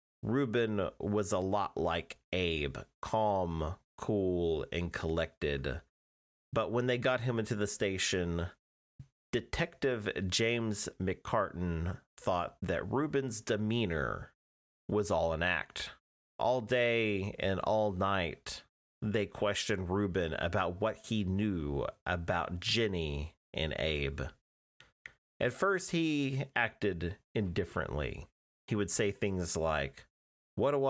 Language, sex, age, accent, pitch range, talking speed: English, male, 30-49, American, 80-110 Hz, 110 wpm